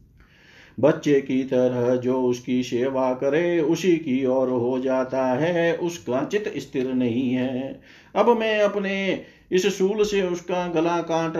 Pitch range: 135-170 Hz